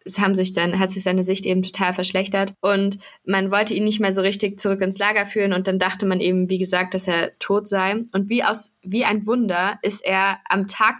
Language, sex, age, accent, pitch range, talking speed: German, female, 20-39, German, 185-215 Hz, 240 wpm